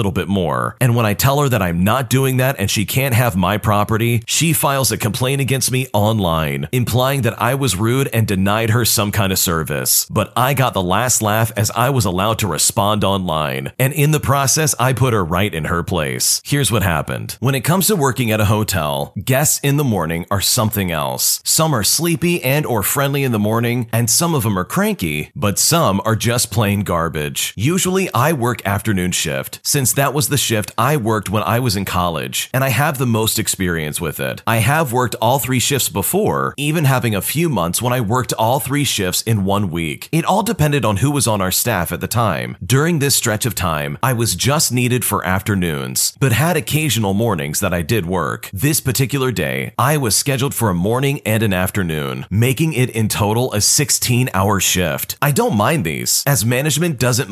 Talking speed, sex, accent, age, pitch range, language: 215 wpm, male, American, 40-59, 100-135 Hz, English